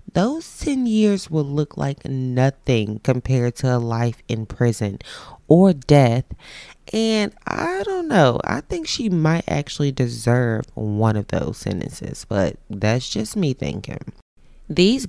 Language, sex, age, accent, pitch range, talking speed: English, female, 20-39, American, 115-145 Hz, 140 wpm